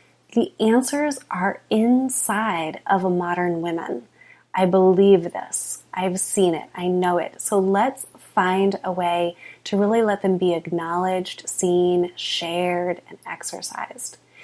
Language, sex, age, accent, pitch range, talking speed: English, female, 20-39, American, 170-195 Hz, 135 wpm